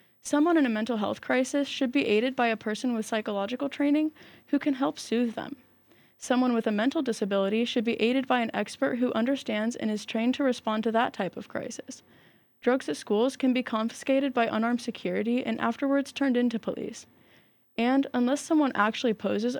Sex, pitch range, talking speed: female, 215-270 Hz, 190 wpm